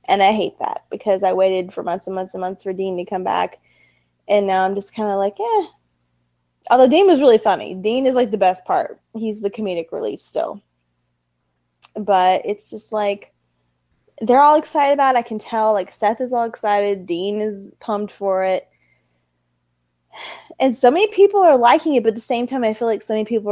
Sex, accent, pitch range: female, American, 185-255 Hz